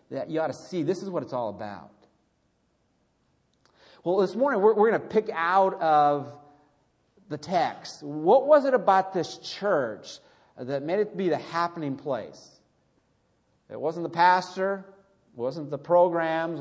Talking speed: 160 wpm